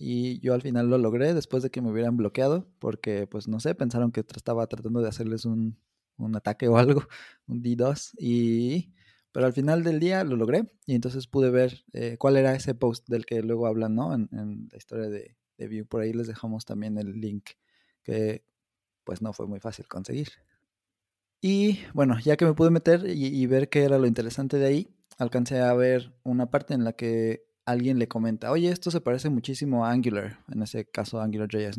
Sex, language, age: male, Spanish, 20-39